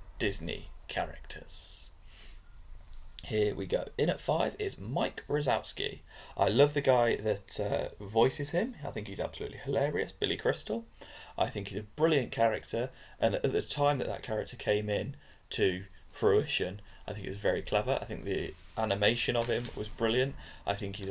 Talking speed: 170 wpm